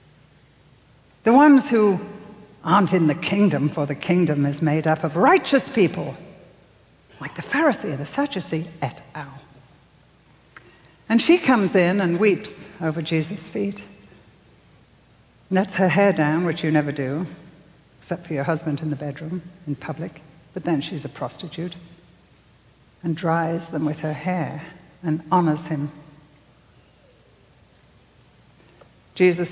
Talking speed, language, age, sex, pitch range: 130 wpm, English, 60-79, female, 150-205 Hz